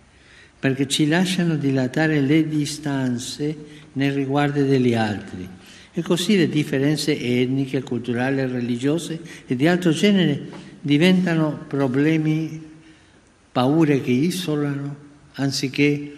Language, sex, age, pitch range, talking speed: Italian, male, 60-79, 110-145 Hz, 100 wpm